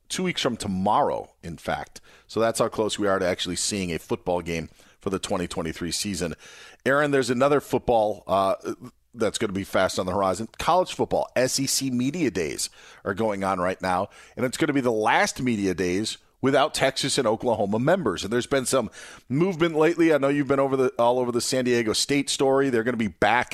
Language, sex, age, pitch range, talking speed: English, male, 40-59, 105-155 Hz, 210 wpm